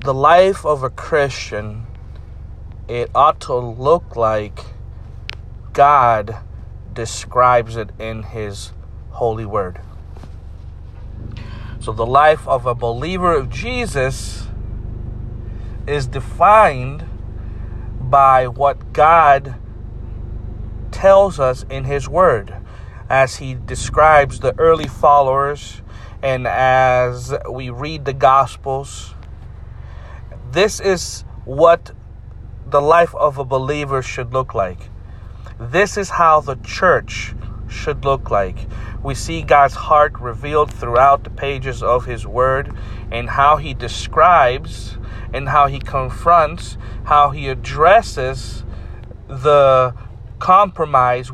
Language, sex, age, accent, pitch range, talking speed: English, male, 40-59, American, 105-140 Hz, 105 wpm